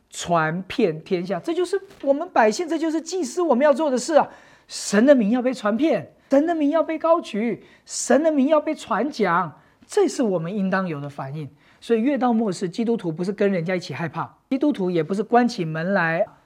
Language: English